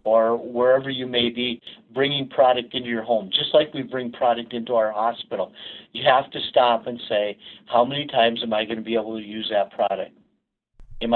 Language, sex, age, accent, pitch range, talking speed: English, male, 50-69, American, 115-125 Hz, 205 wpm